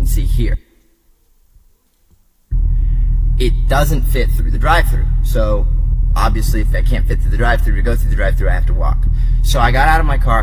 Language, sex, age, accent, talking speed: English, male, 30-49, American, 190 wpm